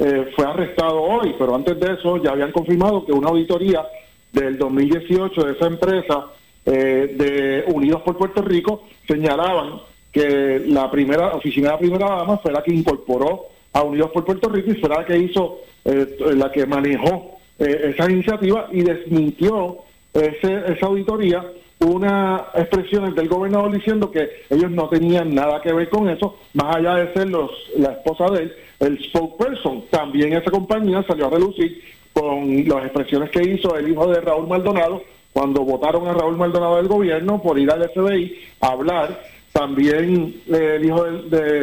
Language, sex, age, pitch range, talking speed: Spanish, male, 40-59, 145-185 Hz, 175 wpm